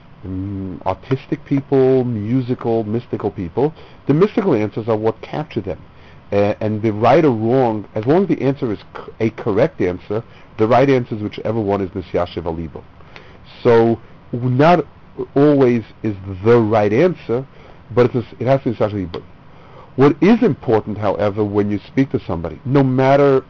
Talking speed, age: 165 wpm, 50-69